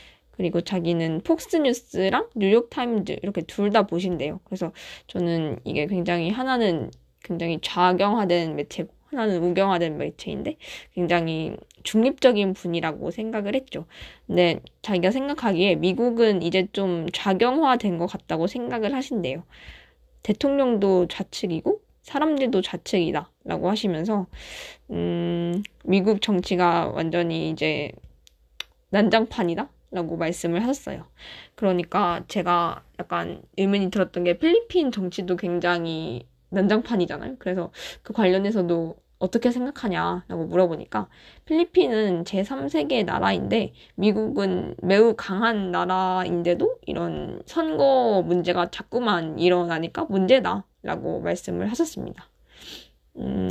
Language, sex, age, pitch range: Korean, female, 20-39, 175-225 Hz